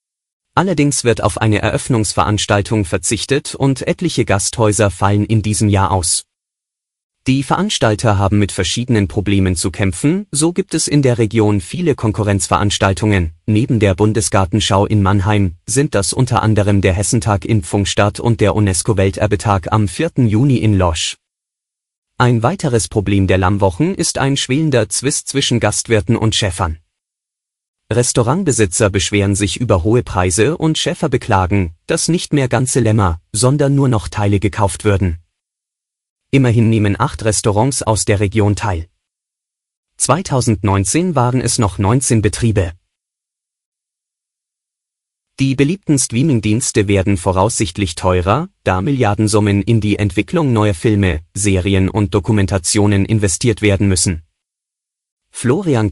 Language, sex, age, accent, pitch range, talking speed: German, male, 30-49, German, 100-125 Hz, 125 wpm